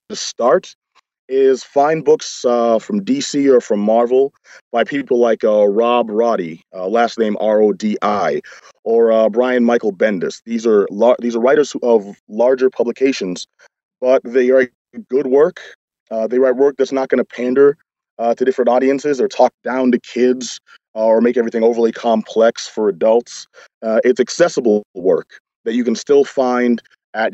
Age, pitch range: 30-49, 115-135 Hz